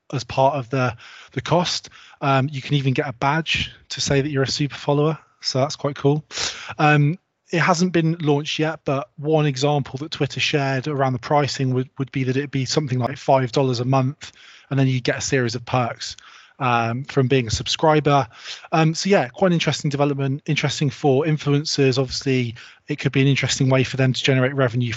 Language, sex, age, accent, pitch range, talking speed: English, male, 20-39, British, 130-150 Hz, 205 wpm